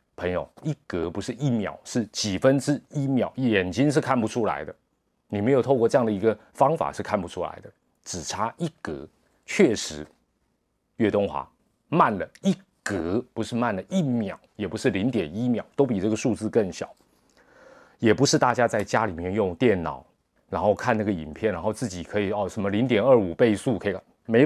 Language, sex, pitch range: Chinese, male, 105-140 Hz